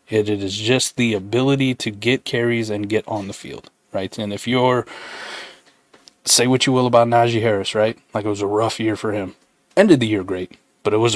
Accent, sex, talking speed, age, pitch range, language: American, male, 225 wpm, 20-39, 110-130 Hz, English